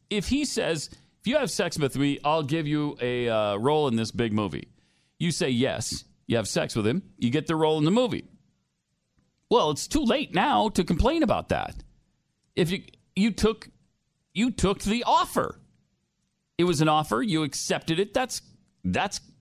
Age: 40-59